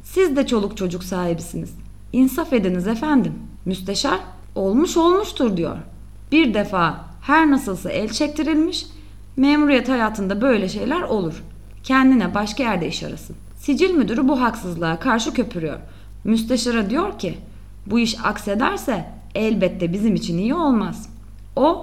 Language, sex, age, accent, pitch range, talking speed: Turkish, female, 30-49, native, 180-275 Hz, 125 wpm